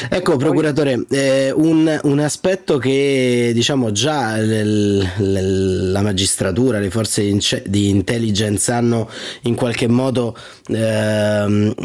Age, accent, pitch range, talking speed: 30-49, native, 105-125 Hz, 110 wpm